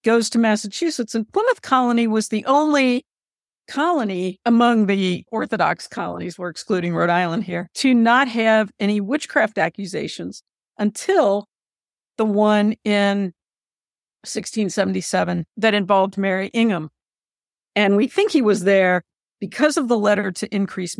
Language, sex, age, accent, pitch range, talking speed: English, female, 50-69, American, 200-250 Hz, 130 wpm